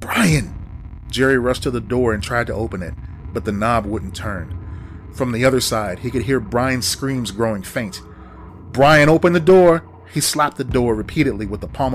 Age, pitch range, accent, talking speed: 30-49, 90-120 Hz, American, 195 wpm